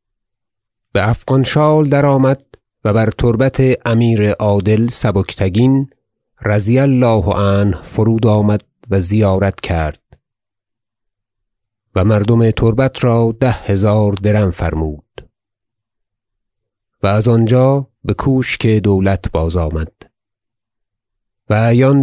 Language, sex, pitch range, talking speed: Persian, male, 100-115 Hz, 100 wpm